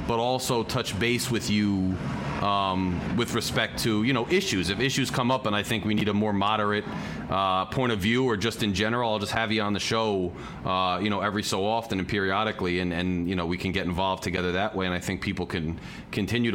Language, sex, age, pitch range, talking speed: English, male, 30-49, 95-115 Hz, 235 wpm